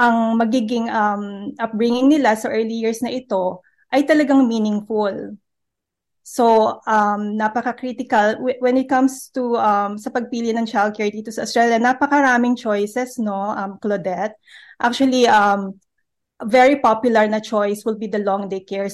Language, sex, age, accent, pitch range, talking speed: Filipino, female, 20-39, native, 205-245 Hz, 140 wpm